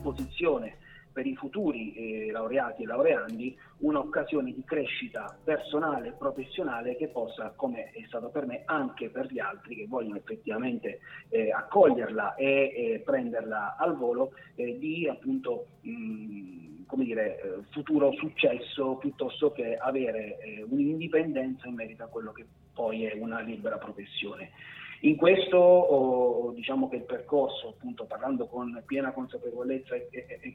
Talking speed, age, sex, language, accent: 140 wpm, 30-49, male, Italian, native